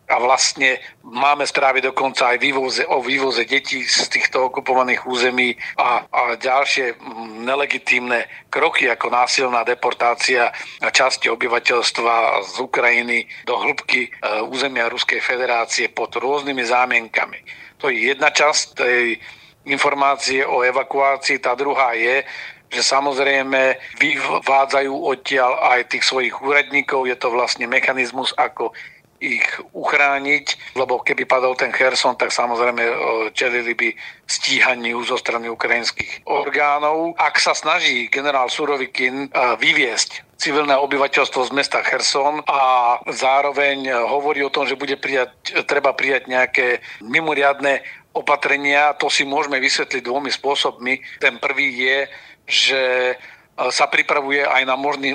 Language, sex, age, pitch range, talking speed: Slovak, male, 50-69, 125-140 Hz, 125 wpm